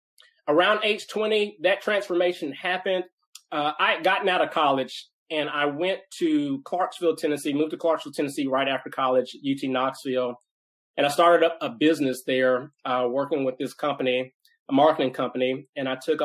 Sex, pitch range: male, 135-210 Hz